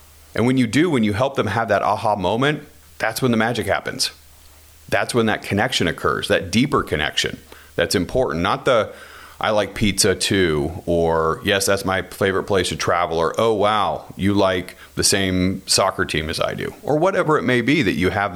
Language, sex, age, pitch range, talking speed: English, male, 40-59, 85-110 Hz, 200 wpm